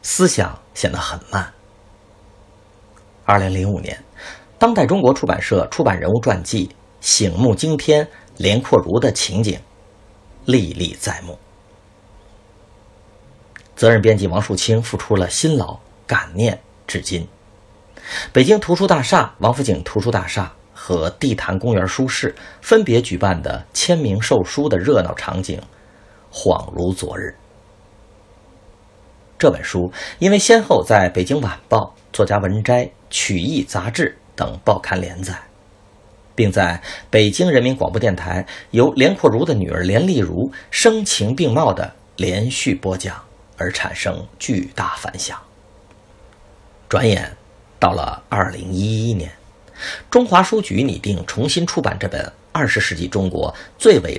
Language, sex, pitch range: Chinese, male, 95-110 Hz